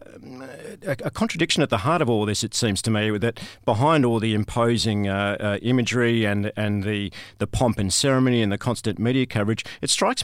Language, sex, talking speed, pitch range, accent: English, male, 200 wpm, 100-120 Hz, Australian